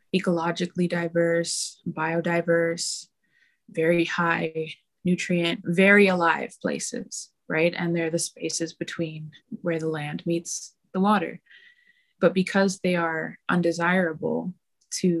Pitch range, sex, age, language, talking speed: 165-200 Hz, female, 20-39, English, 105 wpm